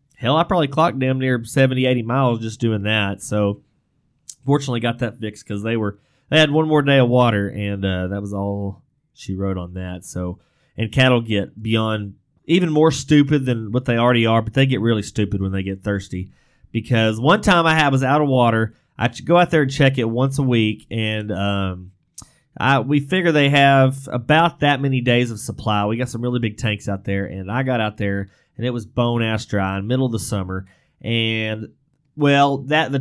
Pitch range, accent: 105-135 Hz, American